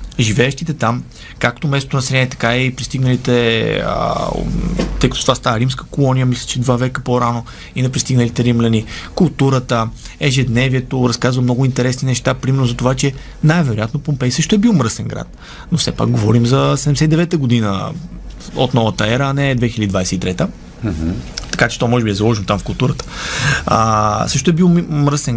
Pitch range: 115-145 Hz